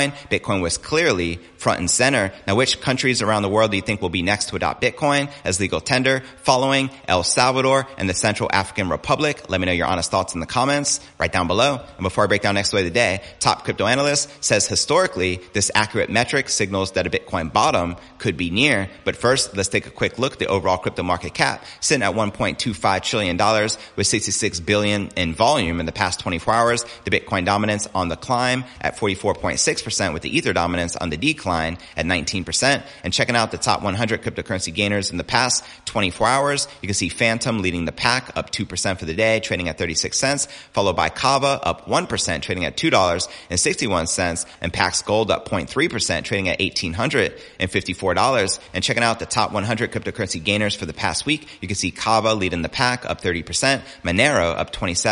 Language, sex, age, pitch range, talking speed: English, male, 30-49, 90-120 Hz, 200 wpm